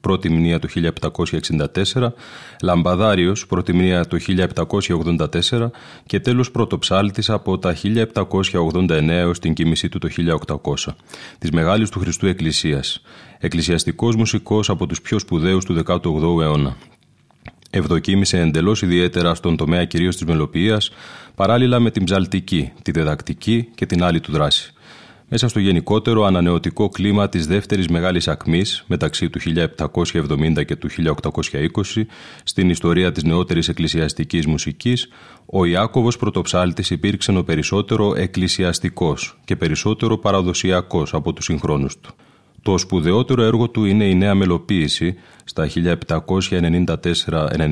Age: 30-49